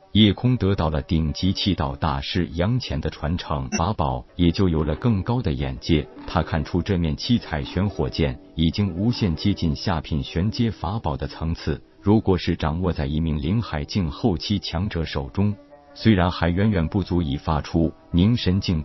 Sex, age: male, 50-69